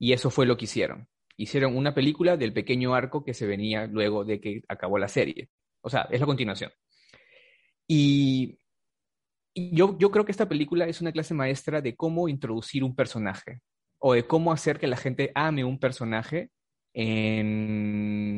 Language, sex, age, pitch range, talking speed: Spanish, male, 30-49, 110-140 Hz, 175 wpm